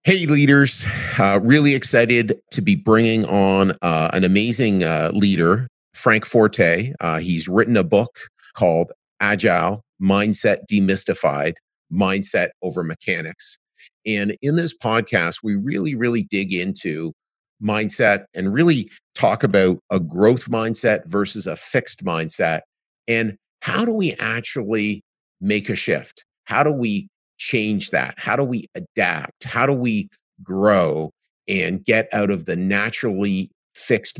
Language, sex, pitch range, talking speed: English, male, 95-115 Hz, 135 wpm